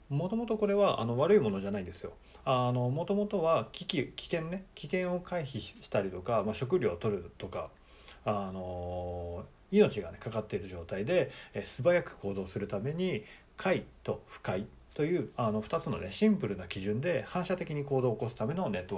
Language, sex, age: Japanese, male, 40-59